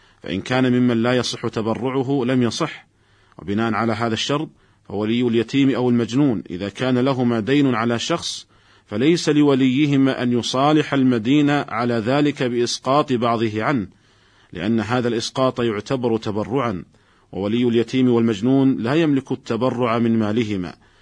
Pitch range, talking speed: 110-130 Hz, 130 wpm